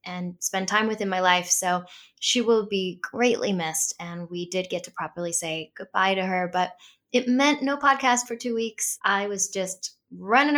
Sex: female